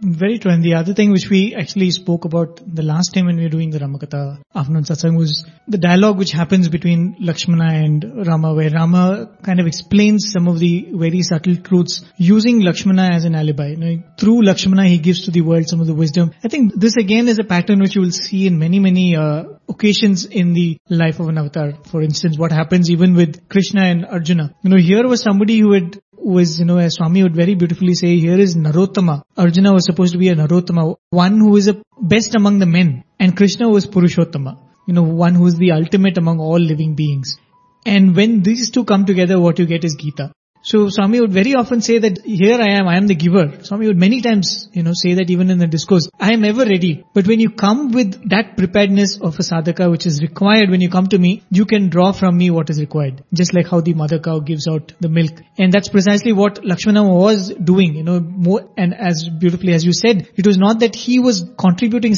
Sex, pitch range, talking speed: male, 170-200 Hz, 230 wpm